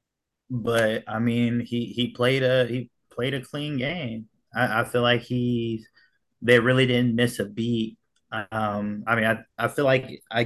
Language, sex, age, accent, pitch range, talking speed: English, male, 20-39, American, 105-120 Hz, 180 wpm